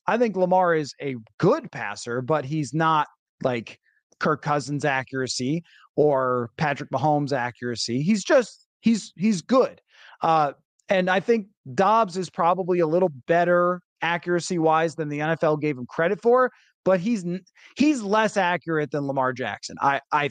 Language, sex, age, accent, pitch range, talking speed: English, male, 30-49, American, 150-200 Hz, 155 wpm